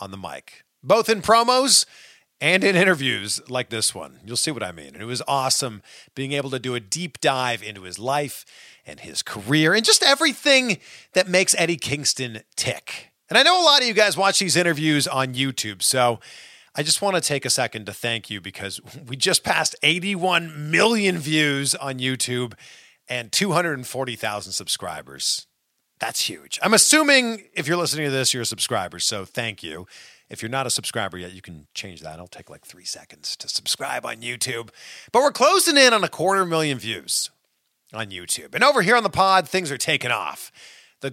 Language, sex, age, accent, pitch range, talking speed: English, male, 40-59, American, 120-190 Hz, 195 wpm